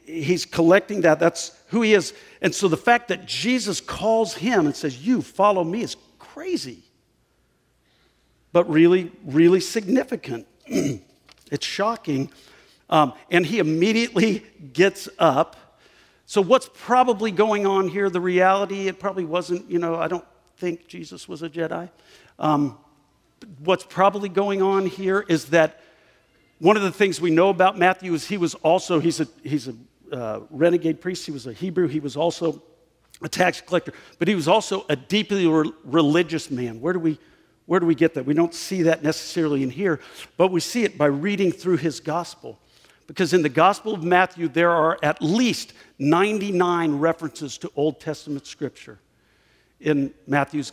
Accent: American